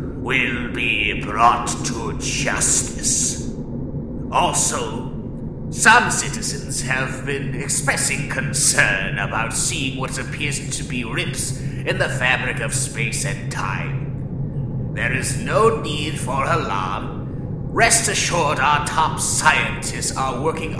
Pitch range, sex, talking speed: 125-140 Hz, male, 115 wpm